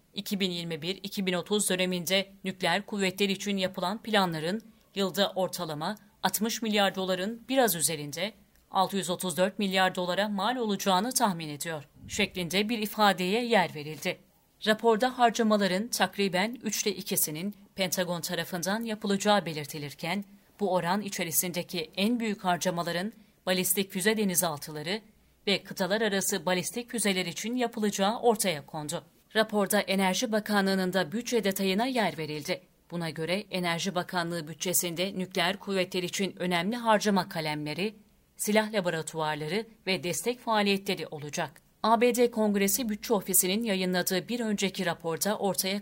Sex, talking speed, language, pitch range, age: female, 115 wpm, Turkish, 180-210 Hz, 40-59